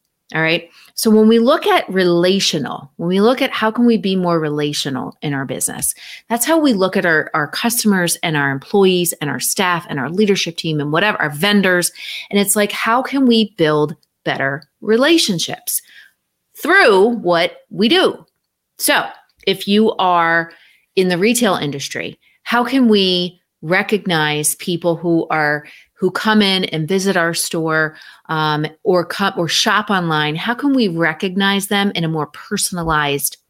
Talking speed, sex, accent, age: 165 wpm, female, American, 30-49